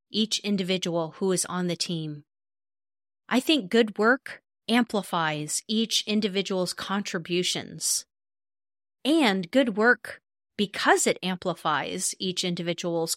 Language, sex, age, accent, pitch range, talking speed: English, female, 30-49, American, 180-245 Hz, 105 wpm